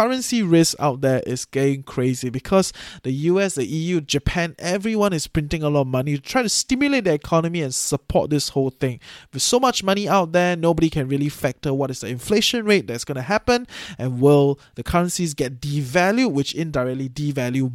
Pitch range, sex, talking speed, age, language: 130-175 Hz, male, 200 wpm, 20-39, English